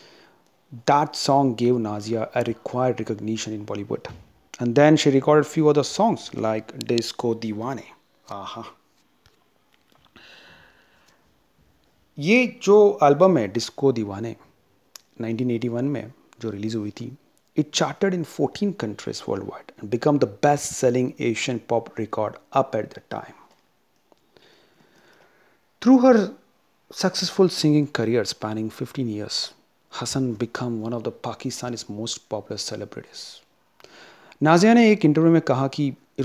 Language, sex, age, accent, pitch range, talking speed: Hindi, male, 40-59, native, 115-155 Hz, 125 wpm